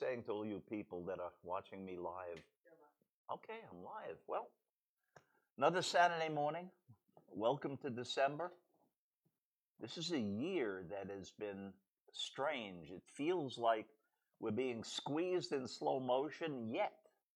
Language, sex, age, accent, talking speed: English, male, 50-69, American, 130 wpm